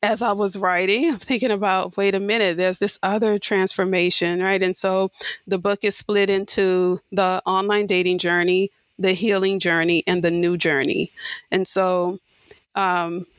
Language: English